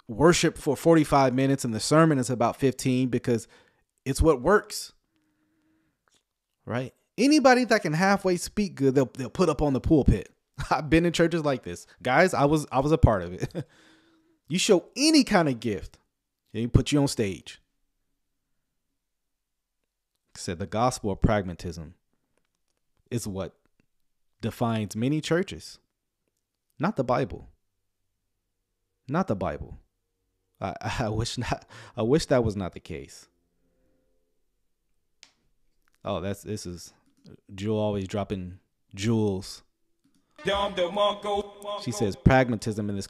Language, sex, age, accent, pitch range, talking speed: English, male, 30-49, American, 100-160 Hz, 130 wpm